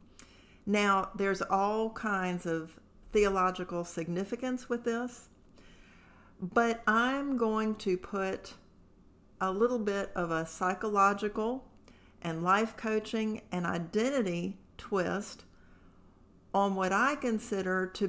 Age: 50-69